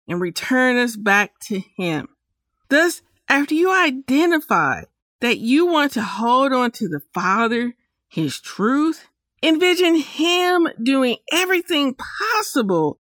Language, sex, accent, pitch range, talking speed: English, female, American, 210-280 Hz, 120 wpm